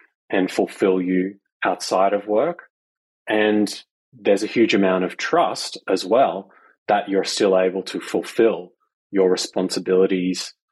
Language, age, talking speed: English, 30-49, 130 wpm